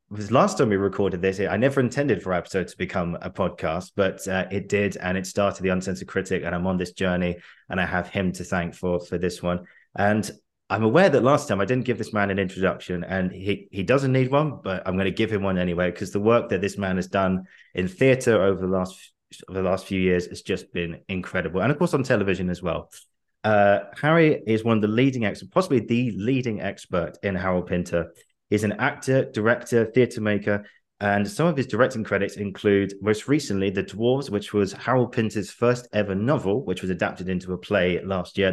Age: 20-39